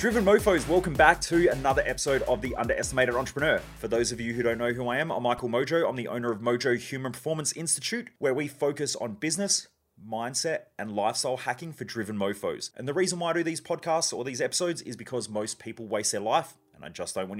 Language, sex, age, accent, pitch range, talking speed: English, male, 30-49, Australian, 120-155 Hz, 230 wpm